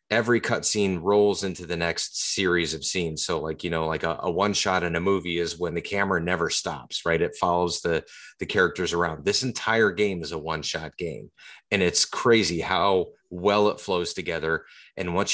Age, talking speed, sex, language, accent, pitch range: 30-49, 195 wpm, male, English, American, 80-100 Hz